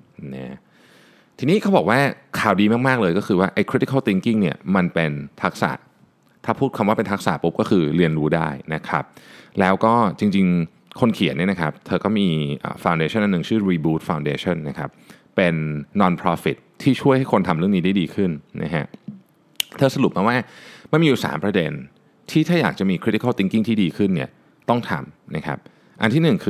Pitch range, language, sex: 80-120 Hz, Thai, male